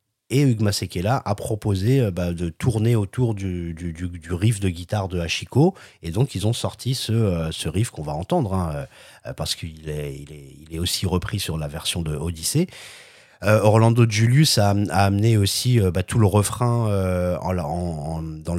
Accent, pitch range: French, 85-115 Hz